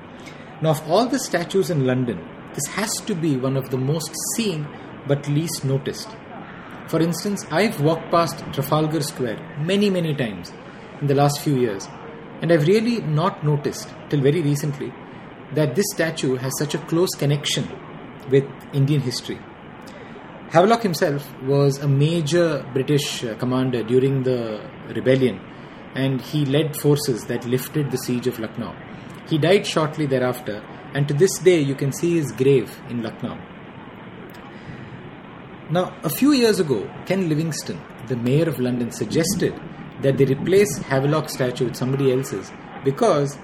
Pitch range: 130-165 Hz